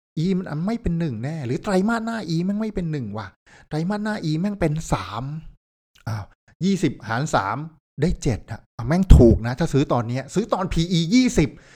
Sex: male